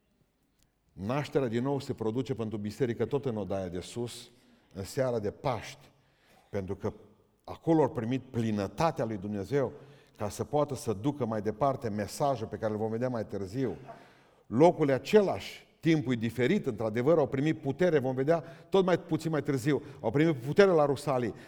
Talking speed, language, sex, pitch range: 165 wpm, Romanian, male, 115-165 Hz